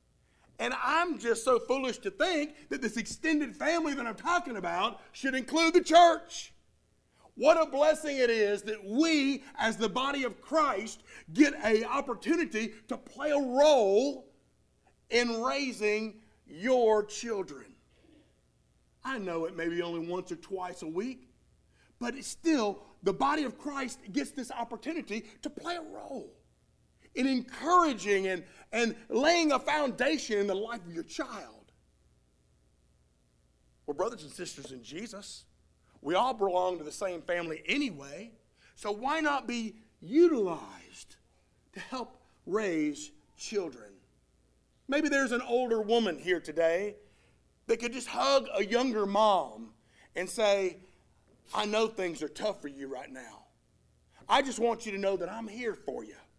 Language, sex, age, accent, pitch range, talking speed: English, male, 50-69, American, 195-280 Hz, 150 wpm